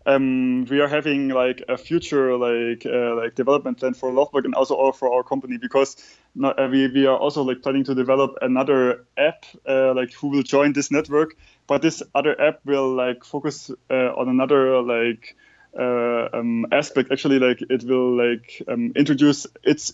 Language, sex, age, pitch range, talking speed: English, male, 20-39, 130-145 Hz, 185 wpm